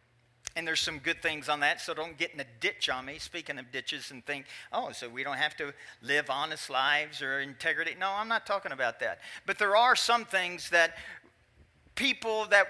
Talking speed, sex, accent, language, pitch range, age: 215 wpm, male, American, English, 130-195 Hz, 50-69